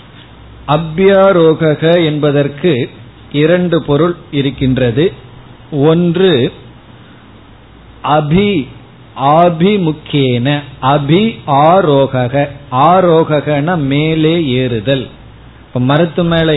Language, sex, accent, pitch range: Tamil, male, native, 135-165 Hz